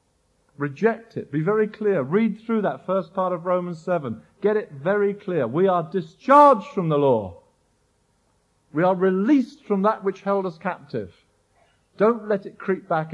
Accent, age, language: British, 40-59, English